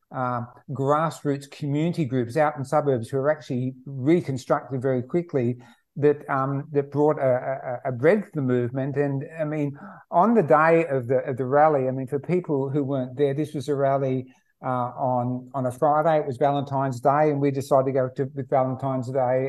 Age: 50-69